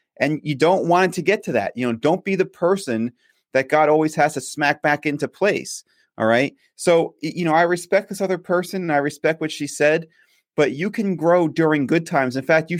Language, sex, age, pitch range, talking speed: English, male, 30-49, 140-180 Hz, 230 wpm